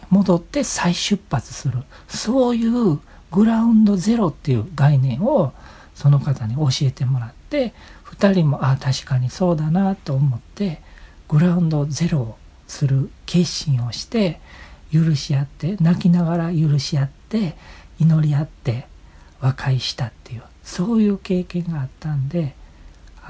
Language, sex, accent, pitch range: Japanese, male, native, 125-175 Hz